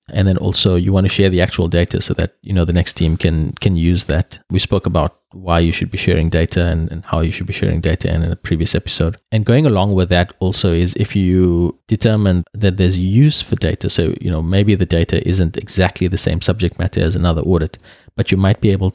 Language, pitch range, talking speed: English, 85-105 Hz, 245 wpm